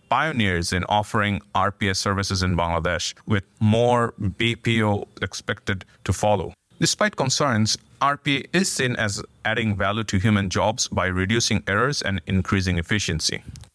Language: English